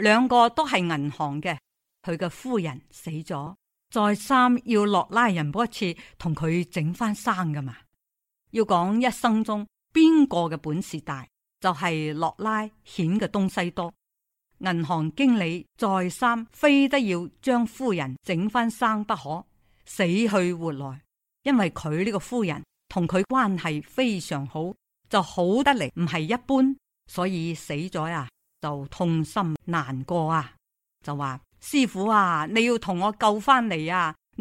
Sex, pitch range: female, 160-230 Hz